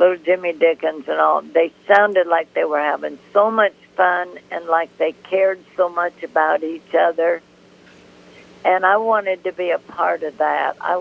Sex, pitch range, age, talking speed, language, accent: female, 150-185 Hz, 60-79, 180 wpm, English, American